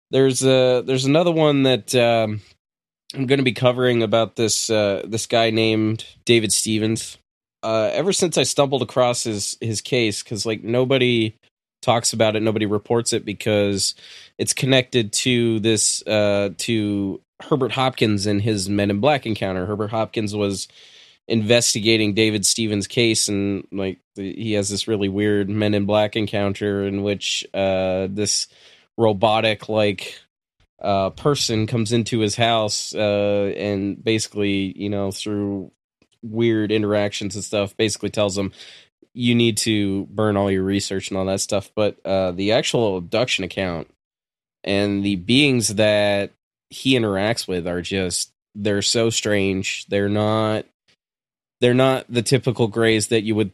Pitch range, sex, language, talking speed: 100-115 Hz, male, English, 150 wpm